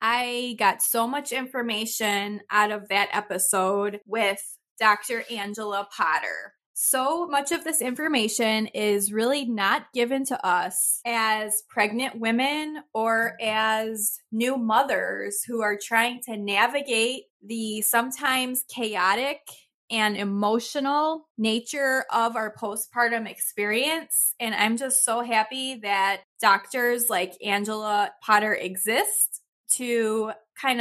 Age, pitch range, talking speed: 20-39, 210-260 Hz, 115 wpm